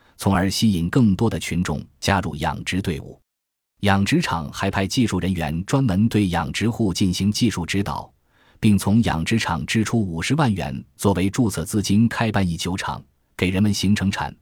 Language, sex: Chinese, male